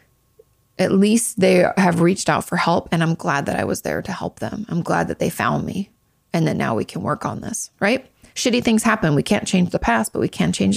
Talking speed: 250 wpm